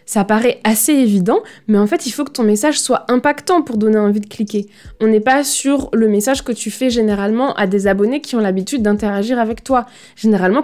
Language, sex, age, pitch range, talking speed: French, female, 20-39, 210-255 Hz, 220 wpm